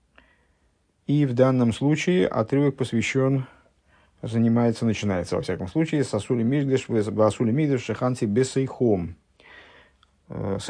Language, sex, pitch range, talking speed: English, male, 100-135 Hz, 95 wpm